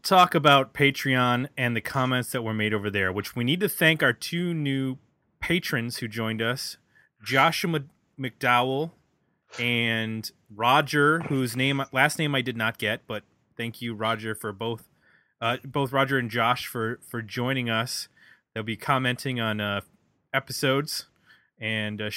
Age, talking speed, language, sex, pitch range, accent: 20-39, 155 wpm, English, male, 115-150 Hz, American